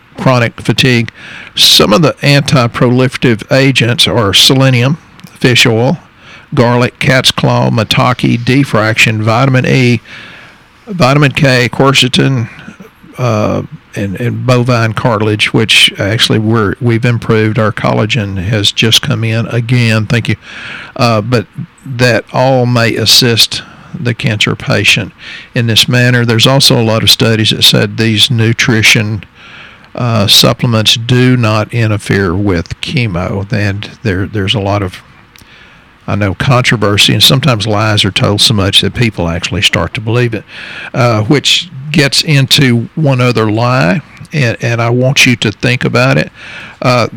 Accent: American